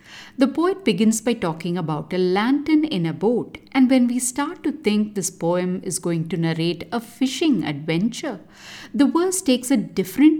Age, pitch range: 60-79, 170-270 Hz